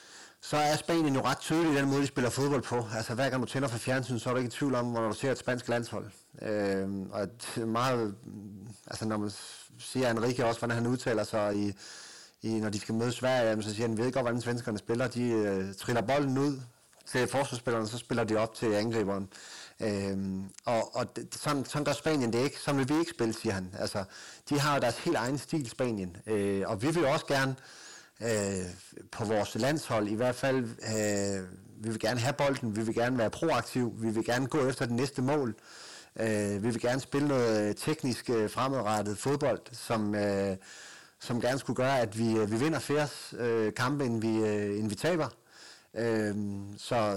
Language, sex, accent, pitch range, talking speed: Danish, male, native, 110-135 Hz, 210 wpm